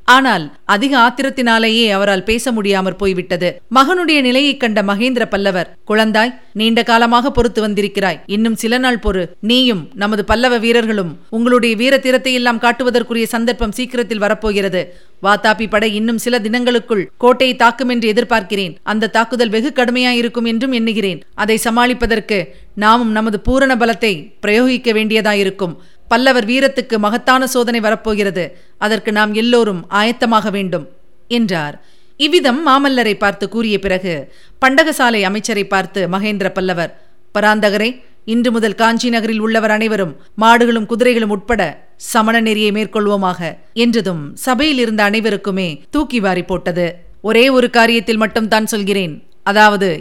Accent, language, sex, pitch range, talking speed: native, Tamil, female, 205-240 Hz, 115 wpm